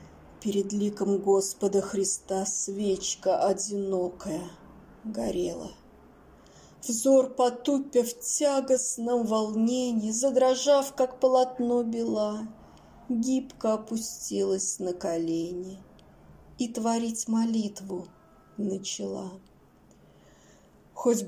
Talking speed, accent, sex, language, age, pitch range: 70 wpm, native, female, Russian, 20-39, 195-240 Hz